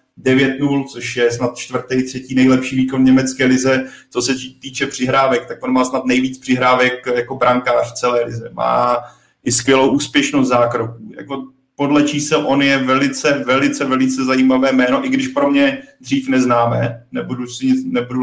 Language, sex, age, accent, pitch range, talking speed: Czech, male, 30-49, native, 125-135 Hz, 160 wpm